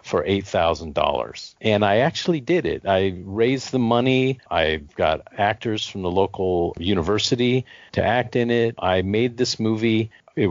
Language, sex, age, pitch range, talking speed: English, male, 50-69, 95-125 Hz, 155 wpm